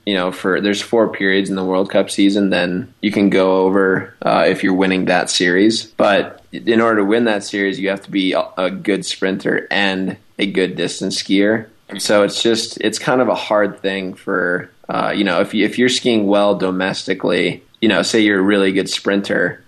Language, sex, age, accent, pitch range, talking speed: English, male, 20-39, American, 95-105 Hz, 215 wpm